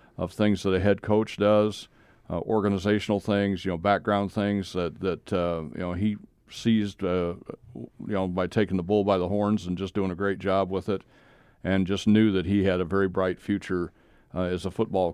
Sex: male